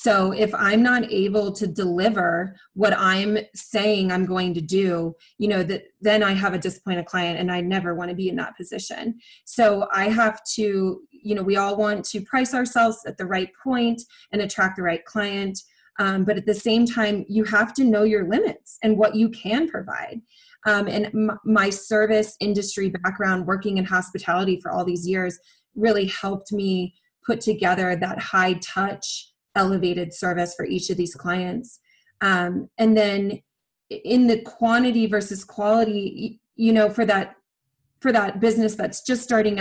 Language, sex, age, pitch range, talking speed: English, female, 20-39, 190-225 Hz, 175 wpm